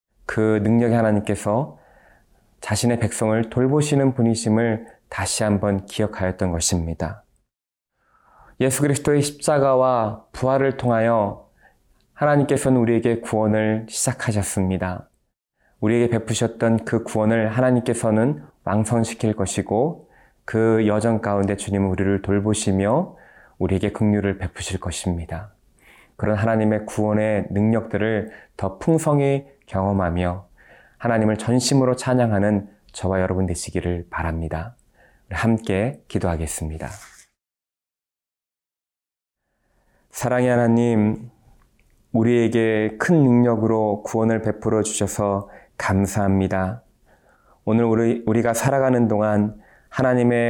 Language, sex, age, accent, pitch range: Korean, male, 20-39, native, 100-120 Hz